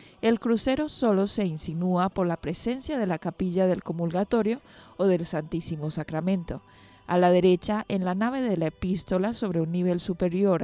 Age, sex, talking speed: 20-39, female, 170 wpm